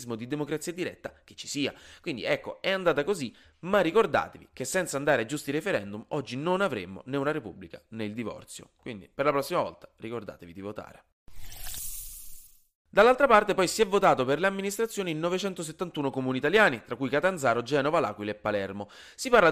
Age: 20-39